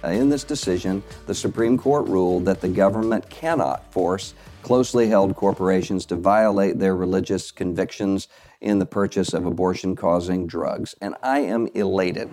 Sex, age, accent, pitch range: male, 50-69, American, 100-145 Hz